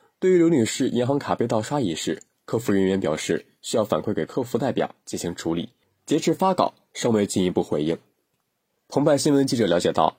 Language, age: Chinese, 20-39